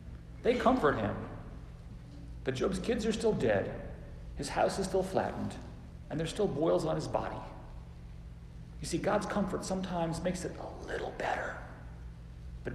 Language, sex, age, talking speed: English, male, 50-69, 150 wpm